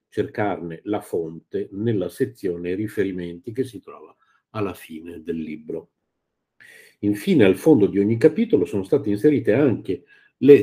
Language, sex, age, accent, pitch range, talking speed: Italian, male, 50-69, native, 100-140 Hz, 135 wpm